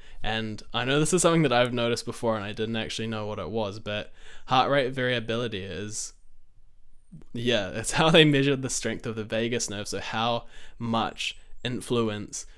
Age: 10-29